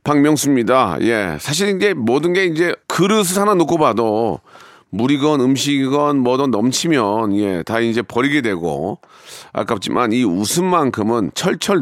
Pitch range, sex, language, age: 120-155 Hz, male, Korean, 40-59